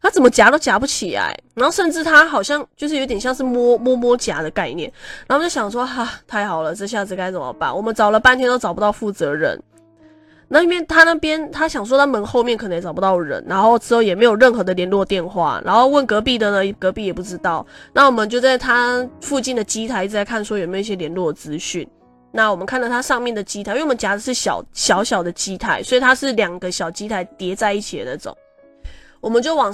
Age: 20-39